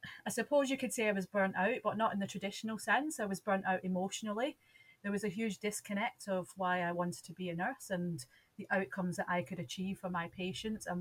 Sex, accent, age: female, British, 30-49